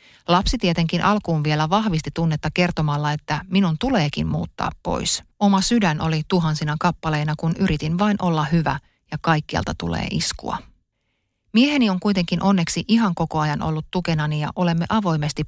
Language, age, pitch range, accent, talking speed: Finnish, 30-49, 155-195 Hz, native, 145 wpm